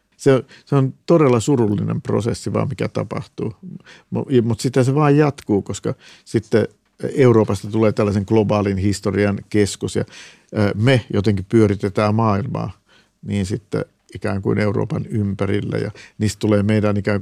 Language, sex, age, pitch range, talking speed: Finnish, male, 50-69, 105-125 Hz, 130 wpm